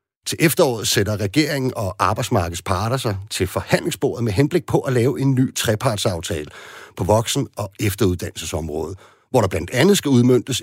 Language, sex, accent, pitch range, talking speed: Danish, male, native, 110-150 Hz, 160 wpm